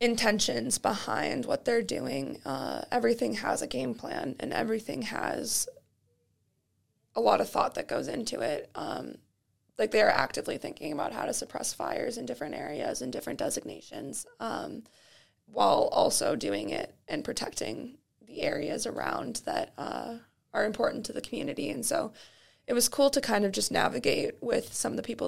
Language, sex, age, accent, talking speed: English, female, 20-39, American, 165 wpm